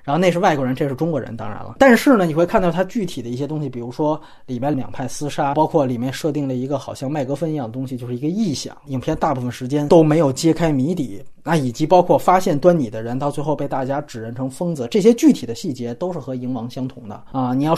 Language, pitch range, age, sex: Chinese, 130-190 Hz, 30-49, male